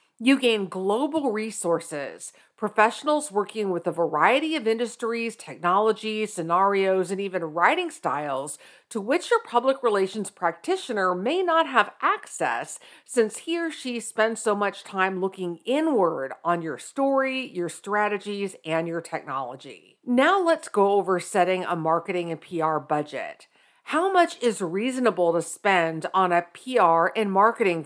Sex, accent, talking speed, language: female, American, 140 wpm, English